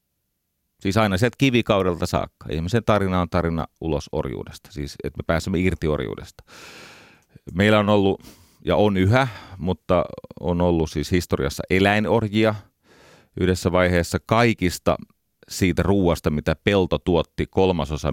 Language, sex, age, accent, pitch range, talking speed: Finnish, male, 30-49, native, 80-100 Hz, 125 wpm